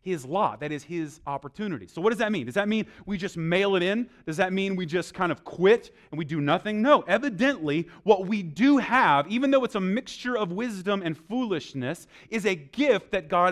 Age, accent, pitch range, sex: 30-49, American, 165-215 Hz, male